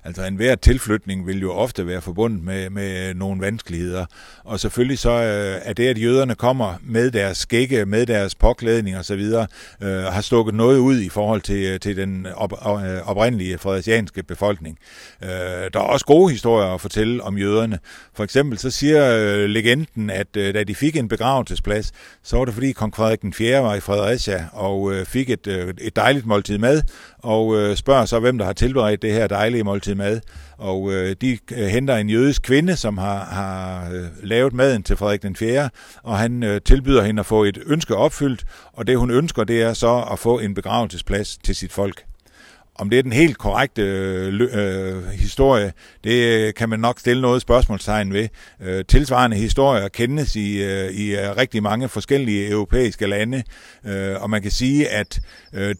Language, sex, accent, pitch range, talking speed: Danish, male, native, 100-120 Hz, 175 wpm